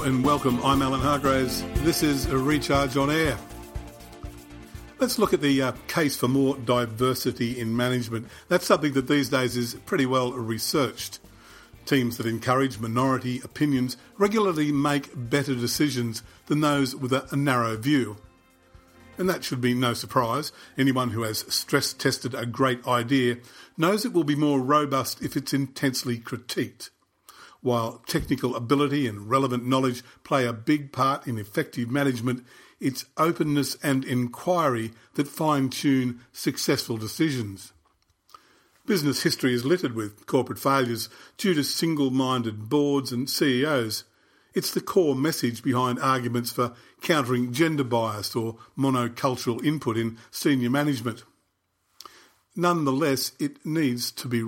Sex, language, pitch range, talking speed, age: male, English, 120-145 Hz, 140 wpm, 50-69